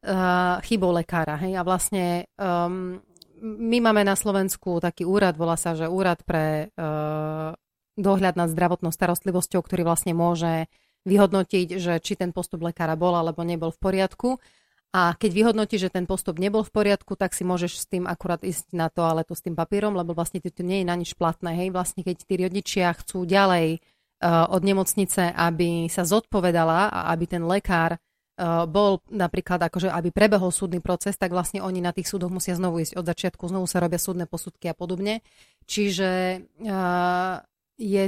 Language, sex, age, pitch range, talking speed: Slovak, female, 30-49, 175-200 Hz, 175 wpm